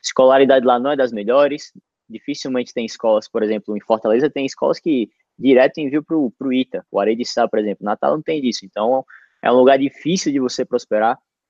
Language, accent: Portuguese, Brazilian